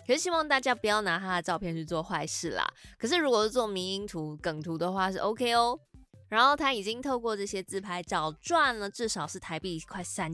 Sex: female